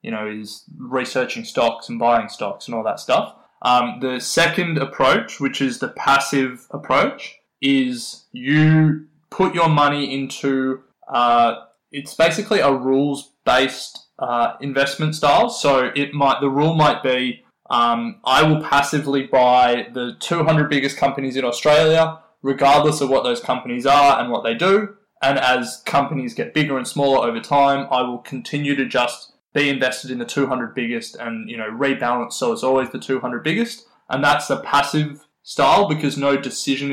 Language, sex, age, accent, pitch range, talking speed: English, male, 20-39, Australian, 125-150 Hz, 165 wpm